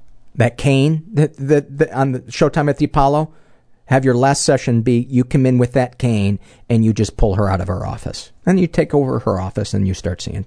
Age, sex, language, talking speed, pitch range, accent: 50-69, male, English, 235 wpm, 100-130 Hz, American